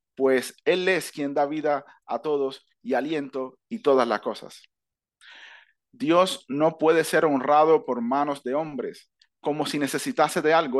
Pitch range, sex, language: 140-175 Hz, male, Spanish